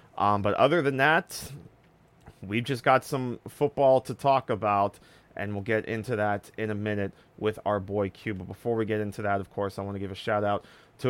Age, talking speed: 30-49, 215 wpm